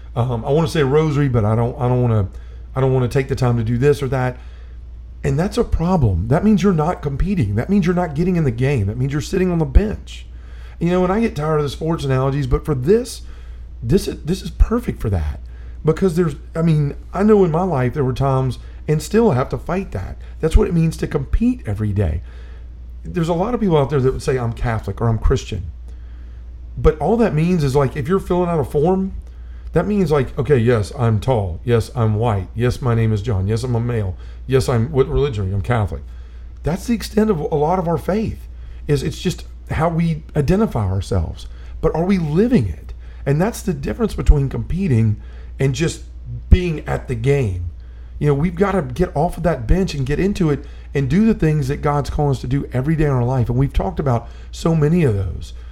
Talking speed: 235 wpm